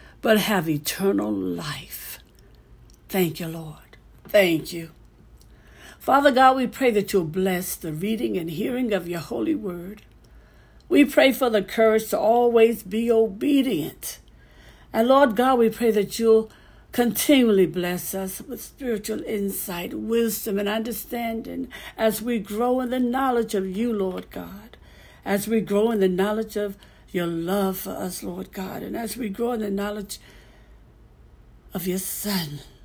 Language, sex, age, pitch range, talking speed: English, female, 60-79, 185-235 Hz, 150 wpm